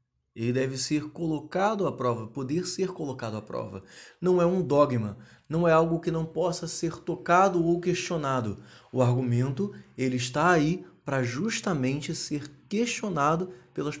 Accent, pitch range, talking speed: Brazilian, 125-180 Hz, 145 wpm